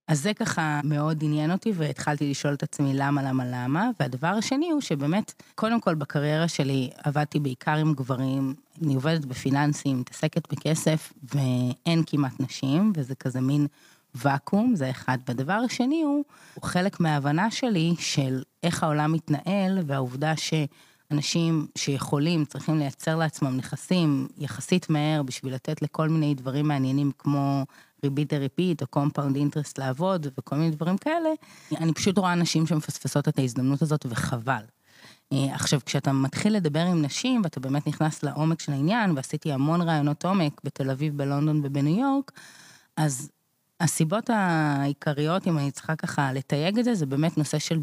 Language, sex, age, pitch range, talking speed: Hebrew, female, 20-39, 140-170 Hz, 150 wpm